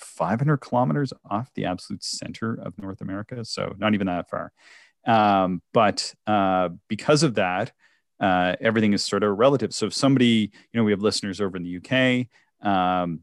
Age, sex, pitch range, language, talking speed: 30-49, male, 85-115 Hz, English, 175 wpm